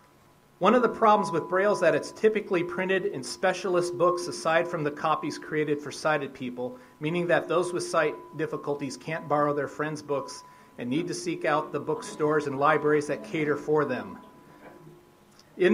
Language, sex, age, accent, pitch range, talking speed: English, male, 40-59, American, 145-185 Hz, 180 wpm